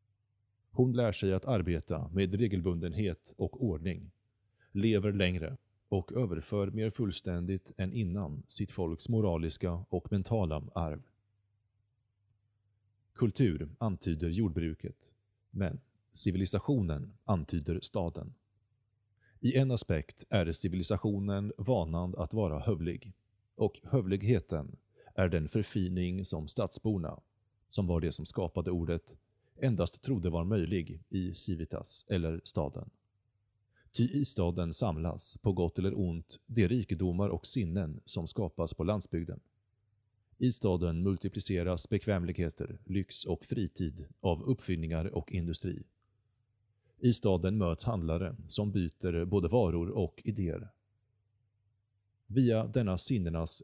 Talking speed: 110 wpm